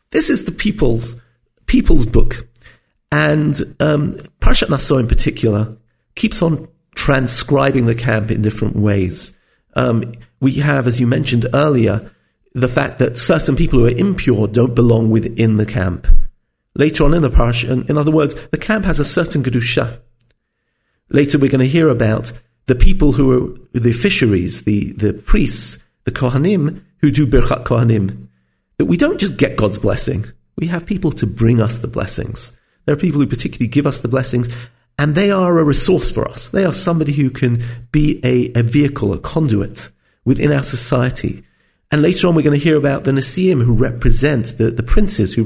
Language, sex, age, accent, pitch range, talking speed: English, male, 50-69, British, 115-150 Hz, 180 wpm